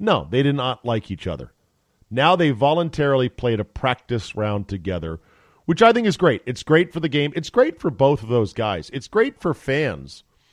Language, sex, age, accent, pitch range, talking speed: English, male, 40-59, American, 100-135 Hz, 205 wpm